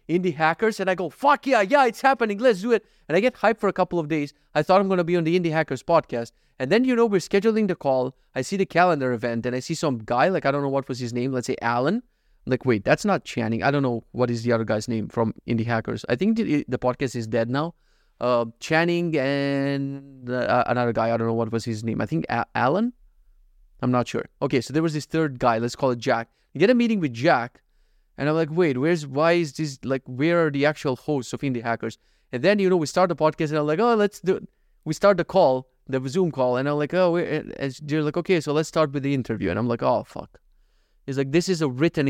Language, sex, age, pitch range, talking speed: English, male, 30-49, 125-170 Hz, 265 wpm